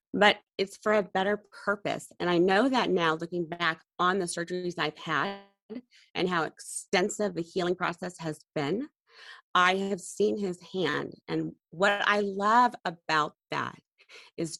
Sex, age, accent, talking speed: female, 30-49, American, 155 wpm